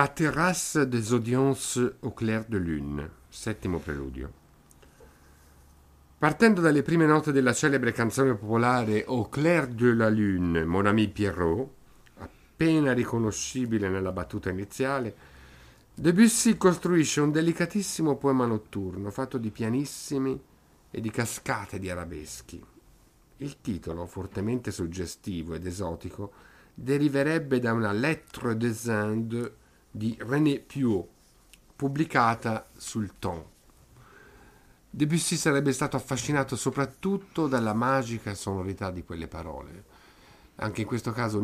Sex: male